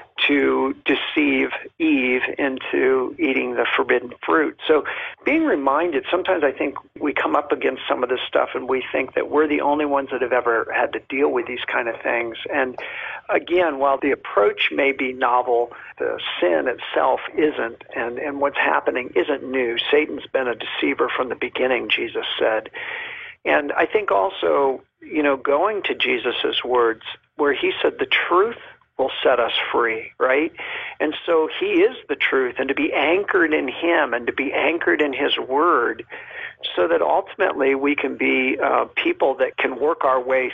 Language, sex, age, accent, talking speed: English, male, 50-69, American, 180 wpm